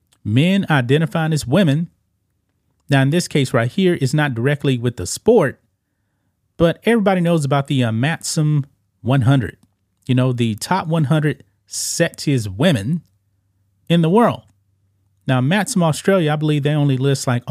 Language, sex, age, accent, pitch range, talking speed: English, male, 30-49, American, 110-155 Hz, 145 wpm